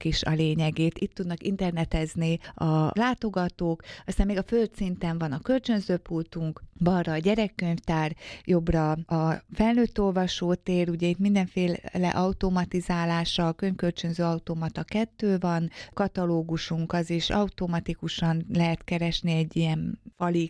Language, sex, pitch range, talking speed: Hungarian, female, 160-190 Hz, 115 wpm